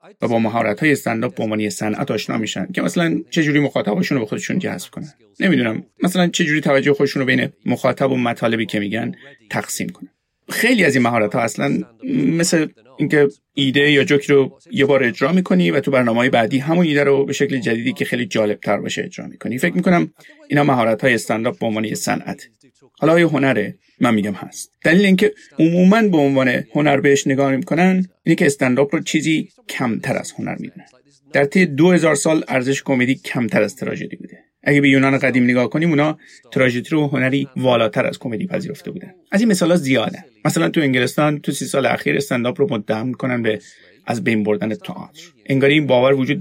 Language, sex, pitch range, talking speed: Persian, male, 125-165 Hz, 185 wpm